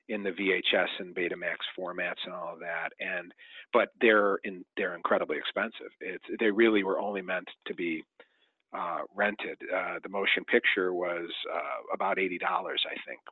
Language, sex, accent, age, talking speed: English, male, American, 40-59, 170 wpm